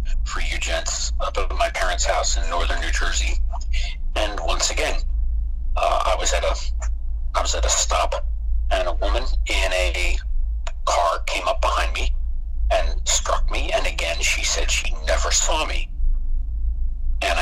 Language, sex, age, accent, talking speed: English, male, 60-79, American, 150 wpm